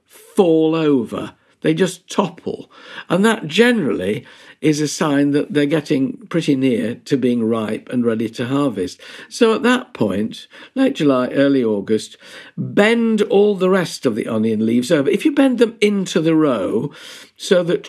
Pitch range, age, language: 130-200 Hz, 50-69, English